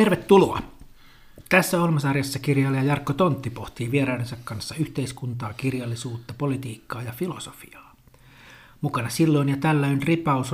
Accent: native